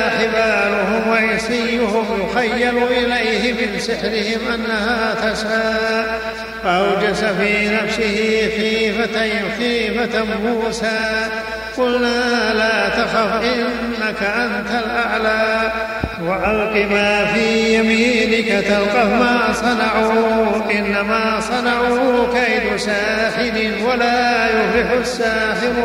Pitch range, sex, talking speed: 220-235 Hz, male, 75 wpm